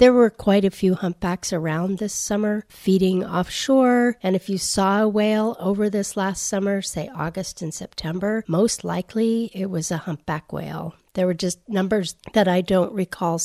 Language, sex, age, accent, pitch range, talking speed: English, female, 40-59, American, 165-195 Hz, 180 wpm